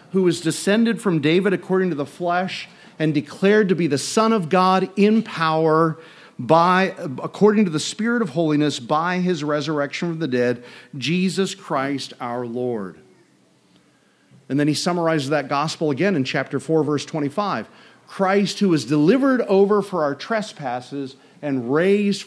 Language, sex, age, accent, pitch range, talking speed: English, male, 40-59, American, 130-190 Hz, 155 wpm